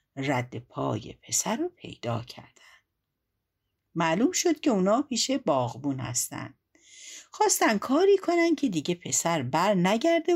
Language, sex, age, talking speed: Persian, female, 60-79, 120 wpm